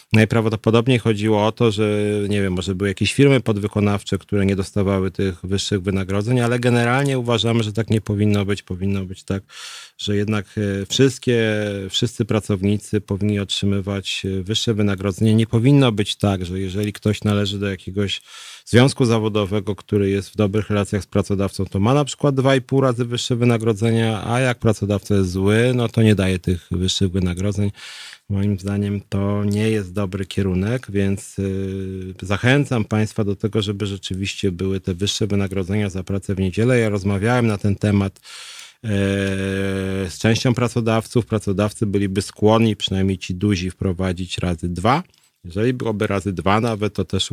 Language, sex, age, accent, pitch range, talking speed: Polish, male, 40-59, native, 100-120 Hz, 160 wpm